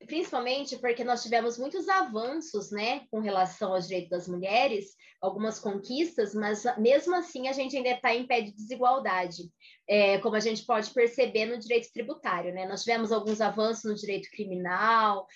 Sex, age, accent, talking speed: female, 20-39, Brazilian, 170 wpm